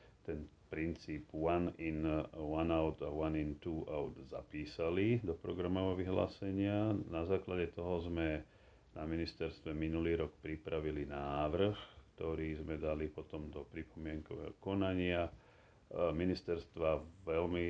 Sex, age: male, 40-59